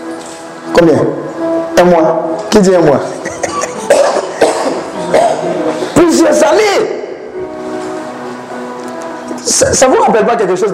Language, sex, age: French, male, 50-69